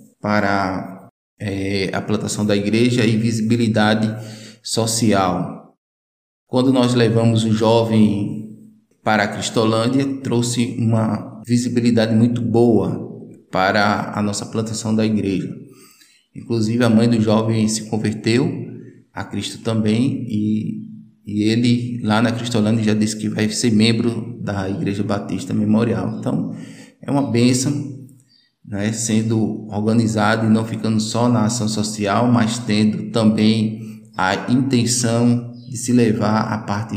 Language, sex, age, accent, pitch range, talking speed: Portuguese, male, 20-39, Brazilian, 105-120 Hz, 125 wpm